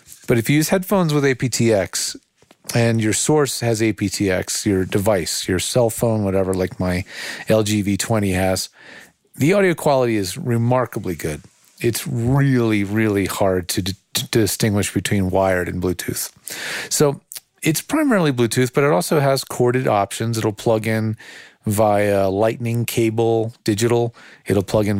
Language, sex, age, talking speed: English, male, 40-59, 140 wpm